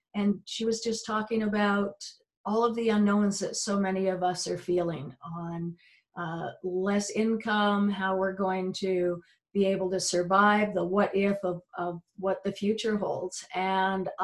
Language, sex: English, female